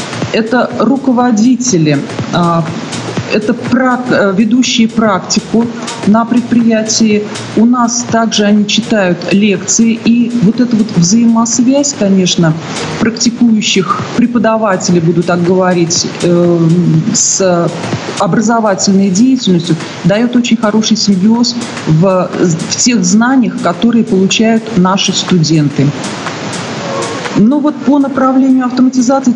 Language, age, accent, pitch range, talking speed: Russian, 40-59, native, 185-235 Hz, 85 wpm